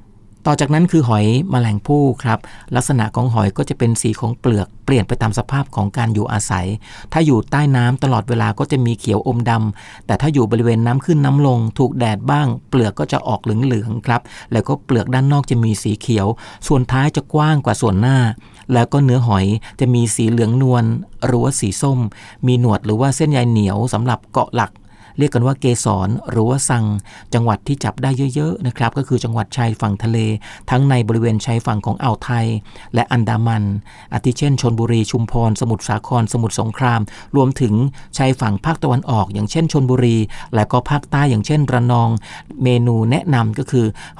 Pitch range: 110-130 Hz